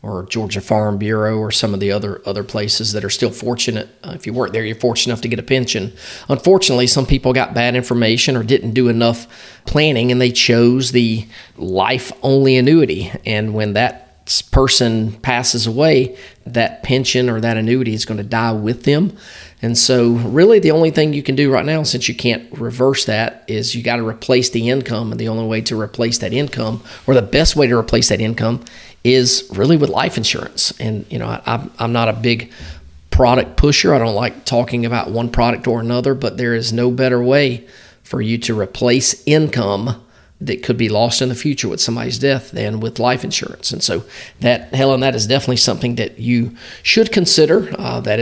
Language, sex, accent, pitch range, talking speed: English, male, American, 115-130 Hz, 200 wpm